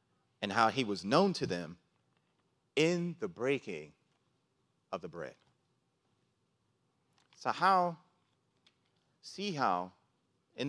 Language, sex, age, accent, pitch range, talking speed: English, male, 30-49, American, 120-180 Hz, 100 wpm